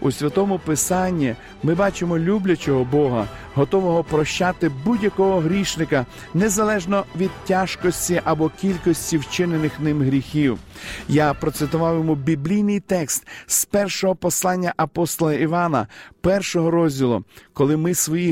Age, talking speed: 50-69, 110 wpm